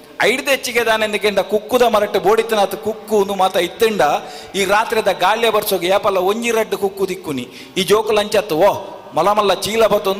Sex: male